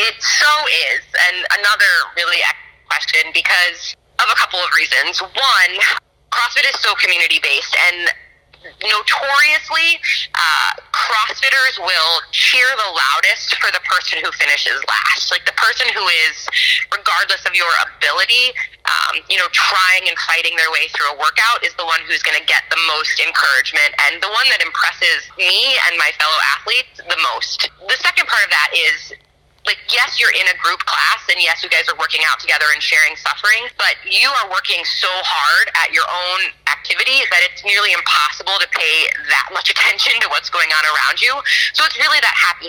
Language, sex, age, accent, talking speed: English, female, 20-39, American, 180 wpm